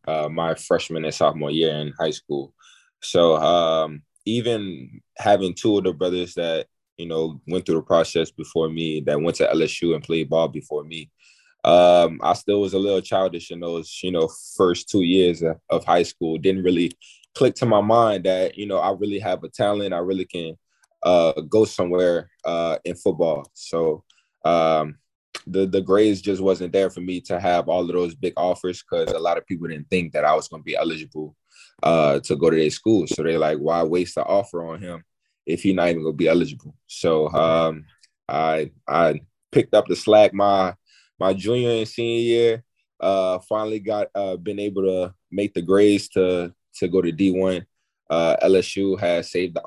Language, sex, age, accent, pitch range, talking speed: English, male, 20-39, American, 80-95 Hz, 195 wpm